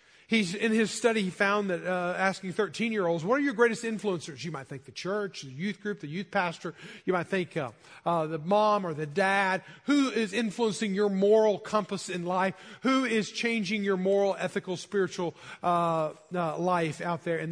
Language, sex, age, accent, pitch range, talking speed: English, male, 40-59, American, 165-200 Hz, 195 wpm